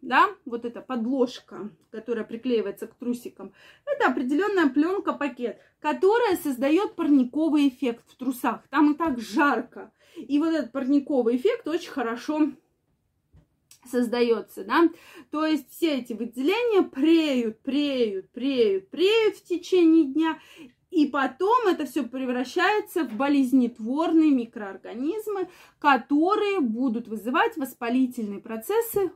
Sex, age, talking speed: female, 20-39, 115 wpm